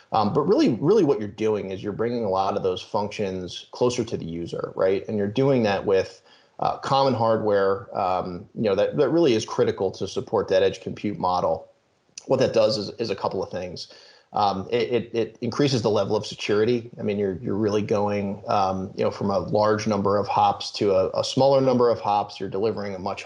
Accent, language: American, English